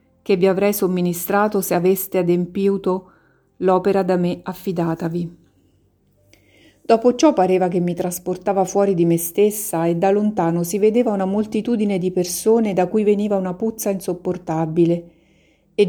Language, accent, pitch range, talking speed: Italian, native, 170-200 Hz, 140 wpm